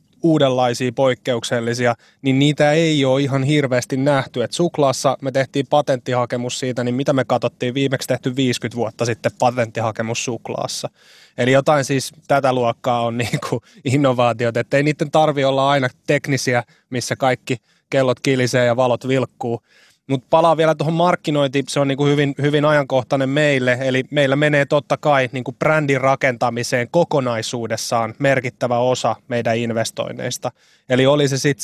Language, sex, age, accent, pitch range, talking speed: Finnish, male, 20-39, native, 125-140 Hz, 150 wpm